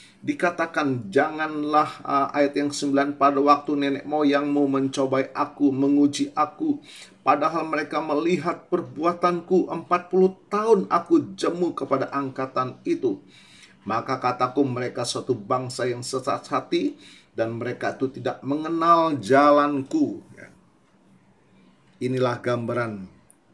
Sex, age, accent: male, 40-59, native